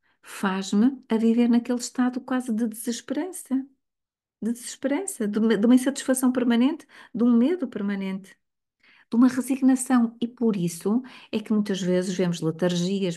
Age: 50-69